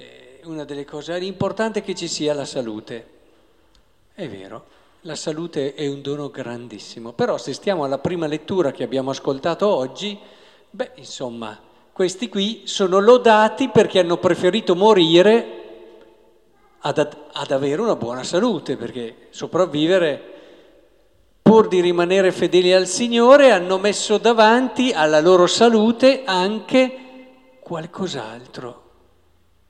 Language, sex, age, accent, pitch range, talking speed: Italian, male, 50-69, native, 145-220 Hz, 120 wpm